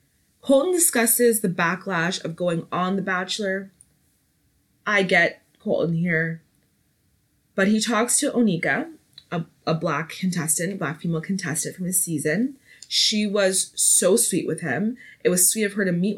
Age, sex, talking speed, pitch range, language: 20-39, female, 150 wpm, 170-220 Hz, English